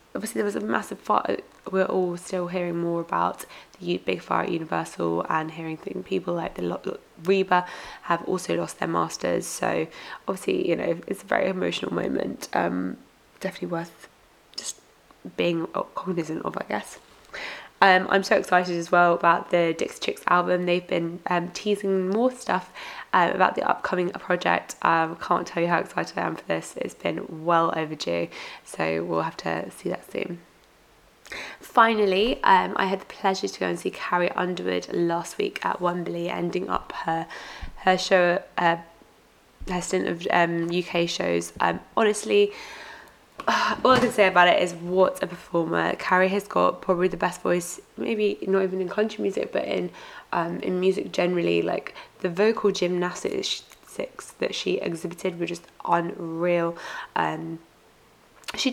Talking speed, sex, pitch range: 165 wpm, female, 170-195 Hz